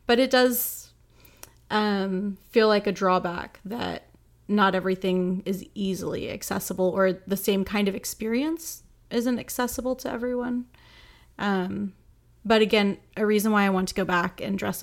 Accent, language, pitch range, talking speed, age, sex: American, English, 190-220 Hz, 150 wpm, 30-49, female